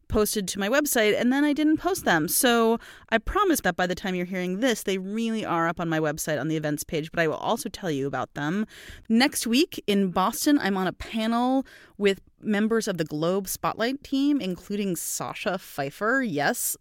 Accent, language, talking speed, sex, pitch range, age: American, English, 205 wpm, female, 170-235 Hz, 30-49